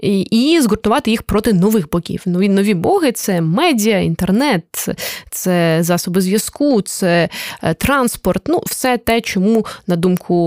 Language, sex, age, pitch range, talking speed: Ukrainian, female, 20-39, 190-245 Hz, 155 wpm